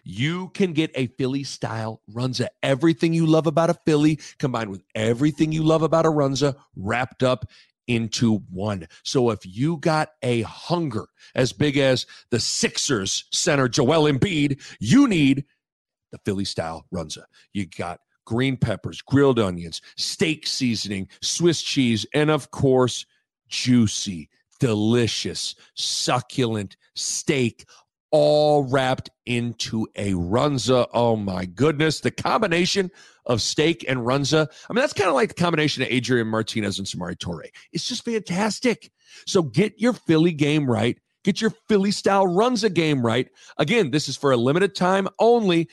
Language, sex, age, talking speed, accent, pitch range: English, male, 40-59, 145 wpm, American, 120-165 Hz